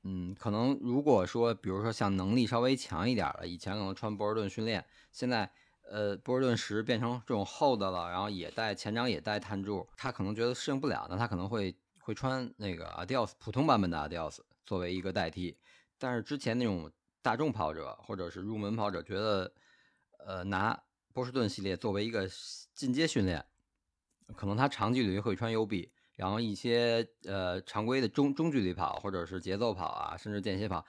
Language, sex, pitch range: Chinese, male, 95-115 Hz